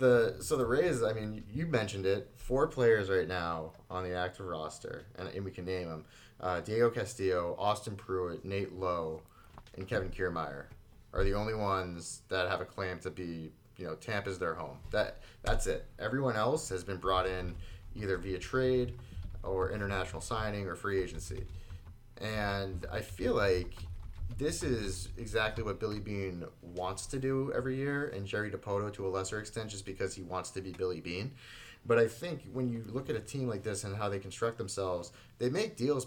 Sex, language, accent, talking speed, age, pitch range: male, English, American, 195 wpm, 30-49, 90-115 Hz